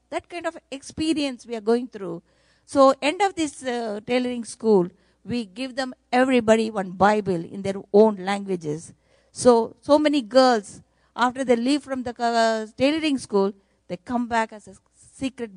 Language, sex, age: English, female, 50-69